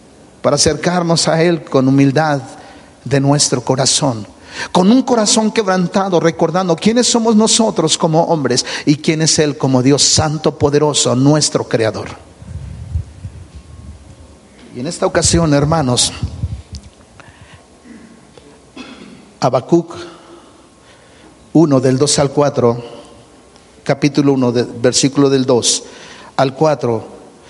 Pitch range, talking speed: 125-170 Hz, 105 wpm